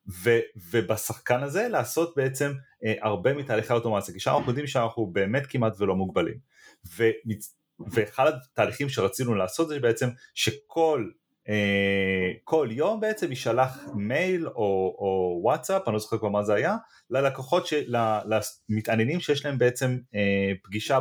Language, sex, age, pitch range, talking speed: Hebrew, male, 30-49, 105-135 Hz, 135 wpm